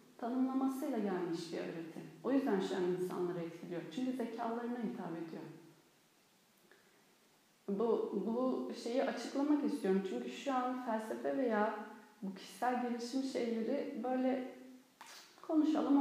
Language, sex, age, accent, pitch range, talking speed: Turkish, female, 40-59, native, 190-260 Hz, 110 wpm